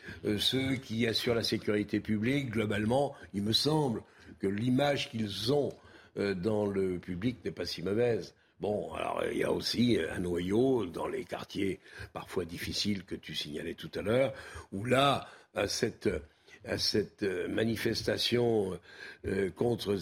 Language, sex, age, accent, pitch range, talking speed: French, male, 60-79, French, 105-135 Hz, 155 wpm